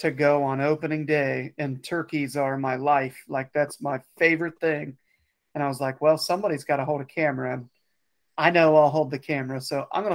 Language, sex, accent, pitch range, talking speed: English, male, American, 145-175 Hz, 215 wpm